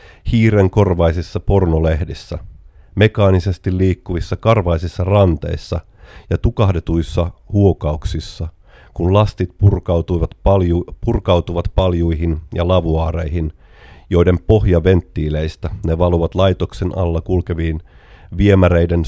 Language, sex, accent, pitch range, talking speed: Finnish, male, native, 85-100 Hz, 80 wpm